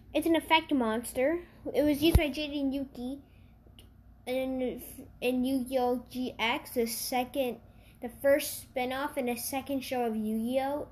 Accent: American